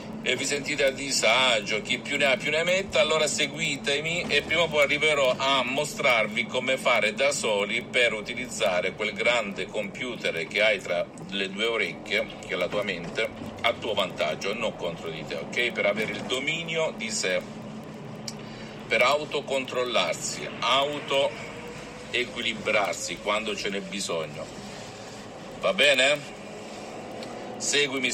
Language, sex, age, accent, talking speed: Italian, male, 50-69, native, 140 wpm